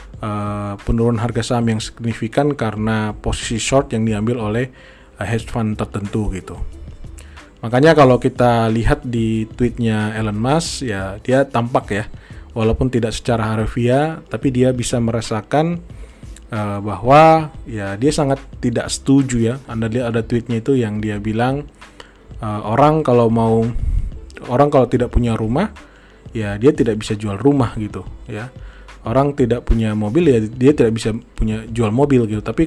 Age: 20-39